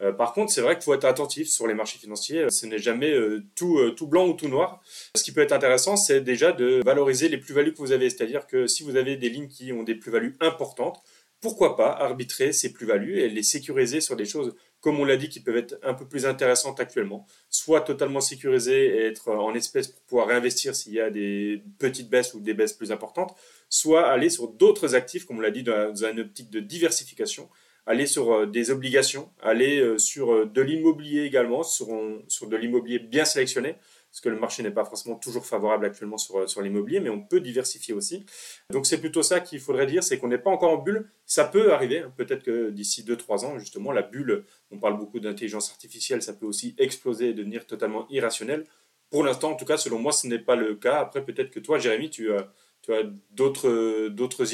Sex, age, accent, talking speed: male, 30-49, French, 220 wpm